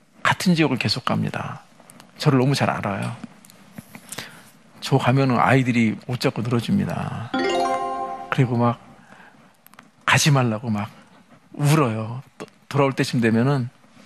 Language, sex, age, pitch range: Korean, male, 50-69, 125-175 Hz